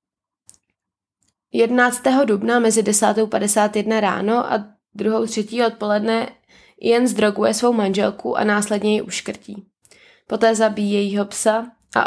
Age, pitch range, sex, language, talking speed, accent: 20-39, 205-235 Hz, female, Czech, 115 wpm, native